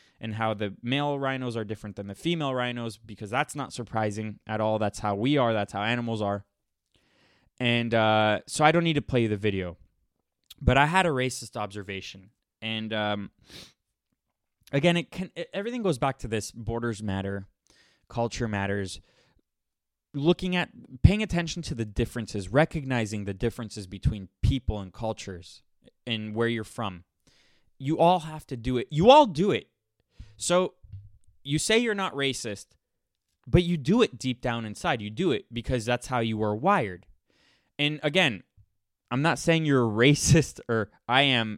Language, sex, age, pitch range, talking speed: English, male, 20-39, 105-140 Hz, 165 wpm